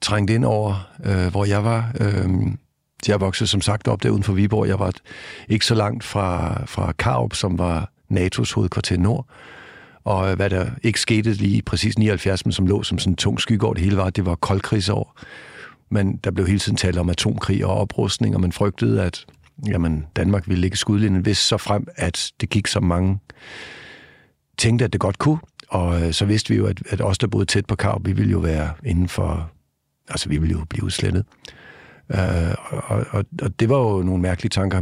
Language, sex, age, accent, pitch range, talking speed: Danish, male, 60-79, native, 95-110 Hz, 210 wpm